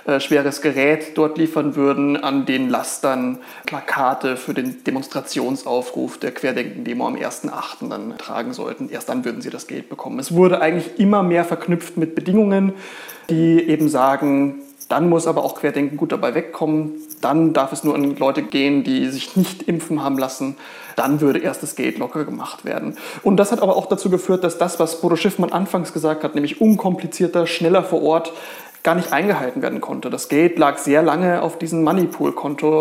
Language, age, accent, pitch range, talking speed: German, 30-49, German, 150-175 Hz, 180 wpm